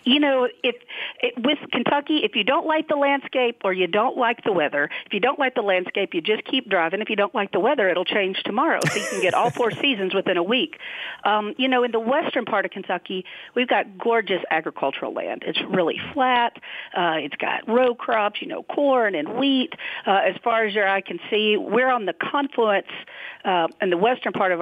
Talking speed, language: 225 wpm, English